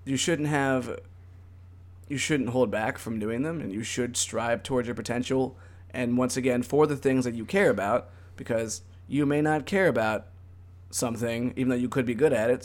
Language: English